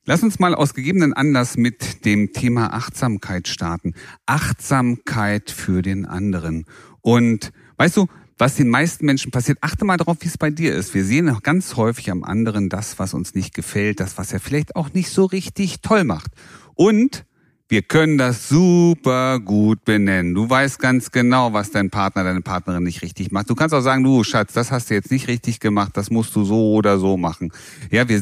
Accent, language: German, German